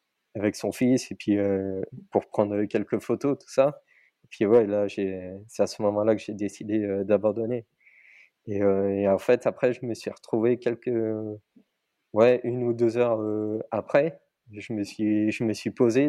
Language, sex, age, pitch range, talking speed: French, male, 20-39, 100-120 Hz, 190 wpm